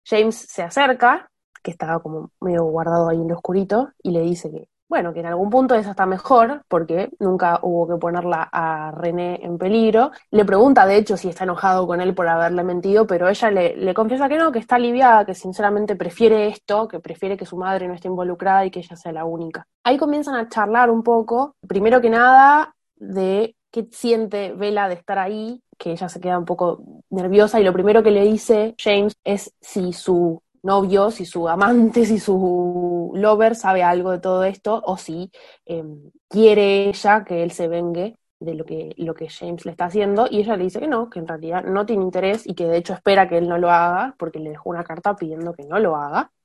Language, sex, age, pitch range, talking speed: Spanish, female, 20-39, 175-220 Hz, 215 wpm